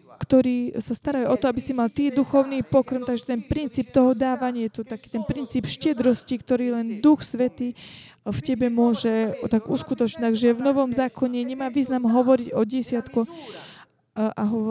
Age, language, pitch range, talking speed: 20-39, Slovak, 220-255 Hz, 165 wpm